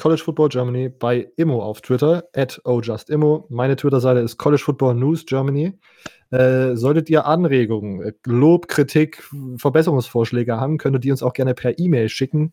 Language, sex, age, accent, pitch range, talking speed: German, male, 20-39, German, 120-145 Hz, 165 wpm